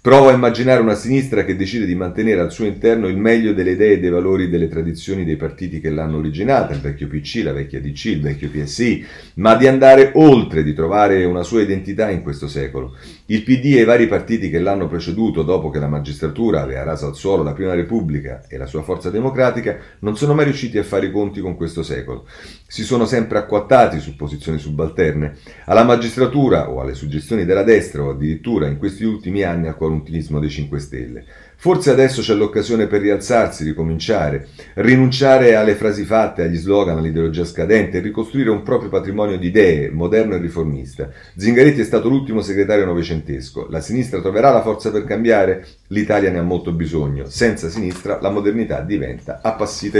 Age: 40-59